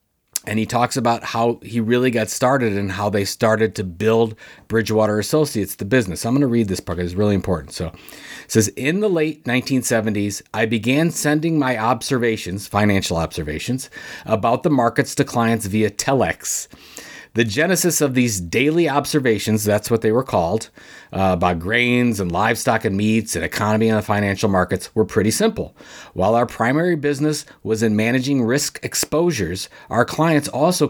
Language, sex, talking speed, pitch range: English, male, 170 wpm, 110-140 Hz